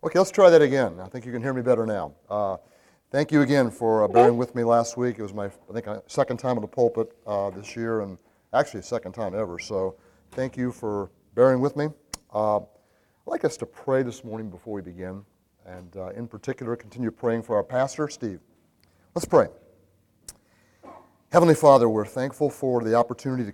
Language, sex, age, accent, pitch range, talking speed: English, male, 30-49, American, 100-125 Hz, 205 wpm